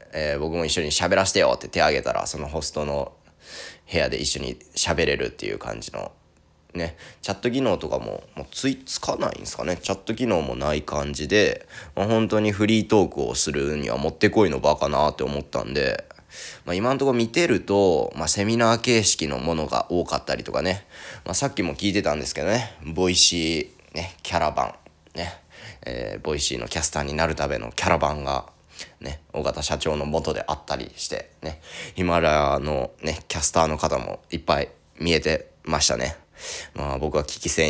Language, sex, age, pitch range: Japanese, male, 20-39, 75-105 Hz